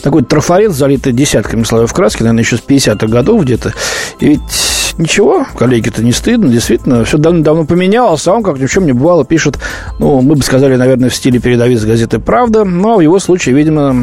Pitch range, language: 125-180 Hz, Russian